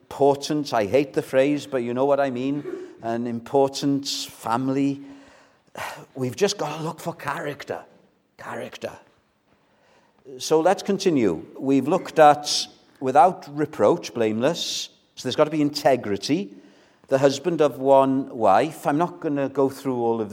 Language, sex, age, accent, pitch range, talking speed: English, male, 50-69, British, 115-155 Hz, 150 wpm